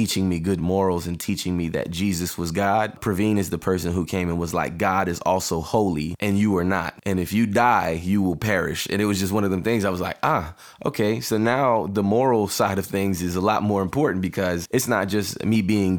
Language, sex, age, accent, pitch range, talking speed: English, male, 20-39, American, 90-105 Hz, 250 wpm